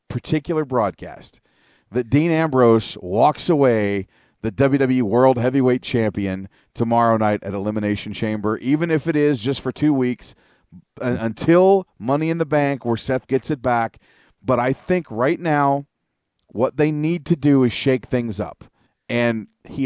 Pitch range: 115-145 Hz